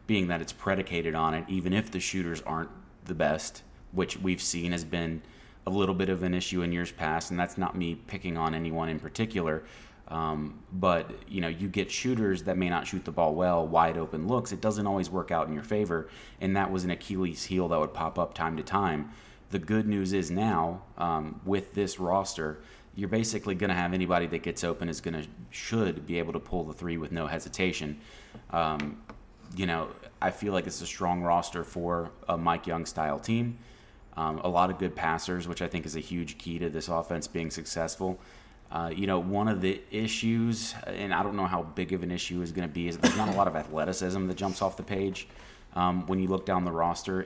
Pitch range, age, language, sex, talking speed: 85-95 Hz, 30-49, English, male, 225 wpm